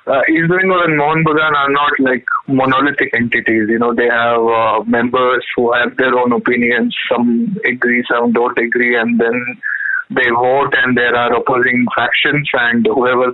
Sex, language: male, English